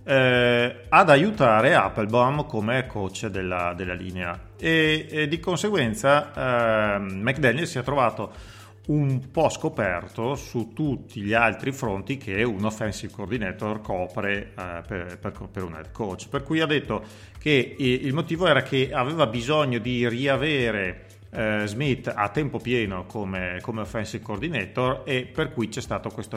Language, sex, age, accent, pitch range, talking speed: Italian, male, 40-59, native, 95-125 Hz, 150 wpm